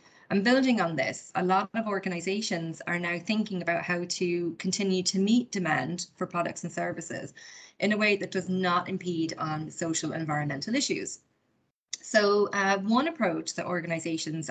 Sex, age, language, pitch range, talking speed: female, 20-39, English, 160-195 Hz, 165 wpm